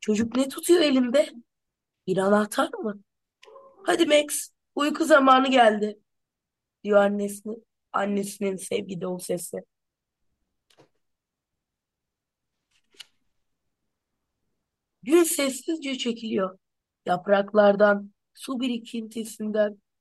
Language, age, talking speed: Turkish, 20-39, 70 wpm